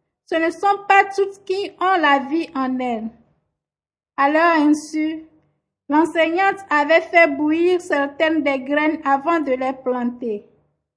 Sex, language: female, French